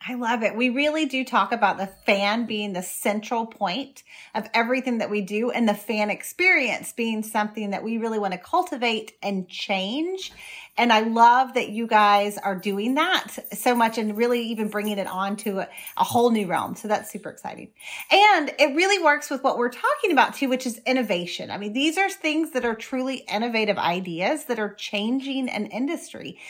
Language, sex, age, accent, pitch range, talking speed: English, female, 30-49, American, 210-270 Hz, 200 wpm